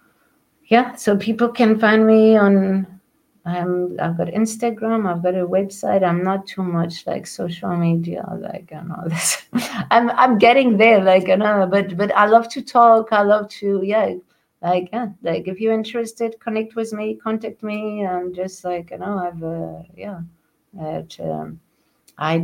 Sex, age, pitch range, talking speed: female, 50-69, 165-200 Hz, 180 wpm